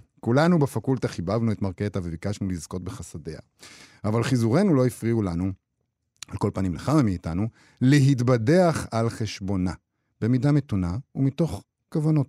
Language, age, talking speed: Hebrew, 50-69, 120 wpm